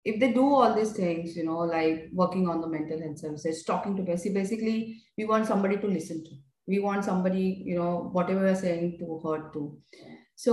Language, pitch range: English, 160-200 Hz